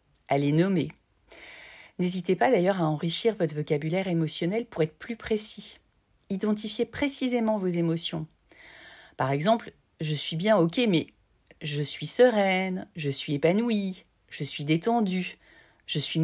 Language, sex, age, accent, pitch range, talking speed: French, female, 40-59, French, 155-220 Hz, 135 wpm